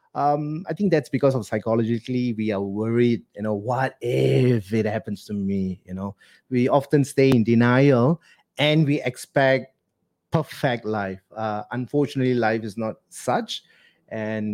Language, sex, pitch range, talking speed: English, male, 115-145 Hz, 155 wpm